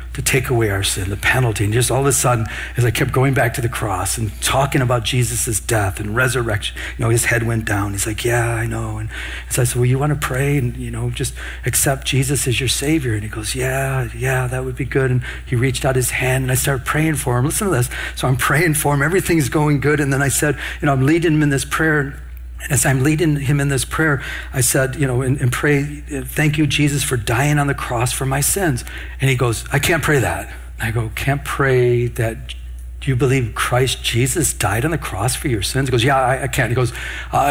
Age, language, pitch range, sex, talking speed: 50-69, English, 115-150 Hz, male, 255 wpm